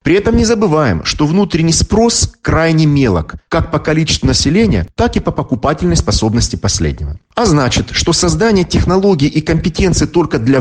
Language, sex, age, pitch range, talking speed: Russian, male, 40-59, 105-175 Hz, 160 wpm